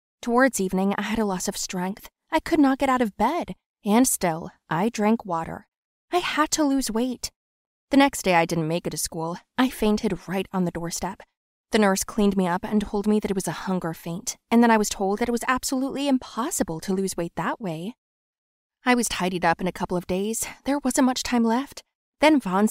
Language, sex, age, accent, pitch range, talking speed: English, female, 20-39, American, 185-255 Hz, 225 wpm